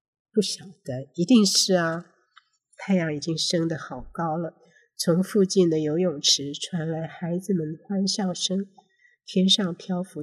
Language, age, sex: Chinese, 50-69, female